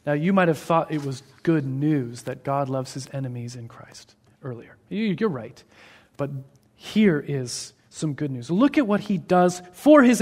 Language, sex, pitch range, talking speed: English, male, 120-185 Hz, 190 wpm